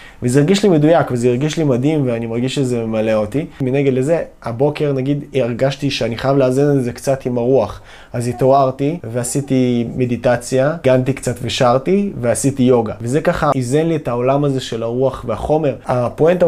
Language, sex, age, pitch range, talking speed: Hebrew, male, 20-39, 120-140 Hz, 170 wpm